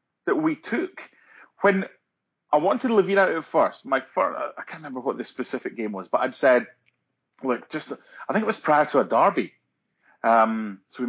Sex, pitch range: male, 120-200 Hz